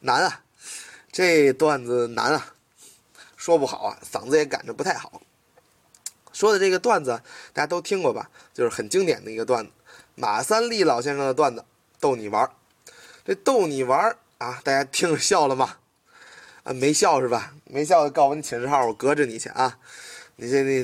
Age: 20-39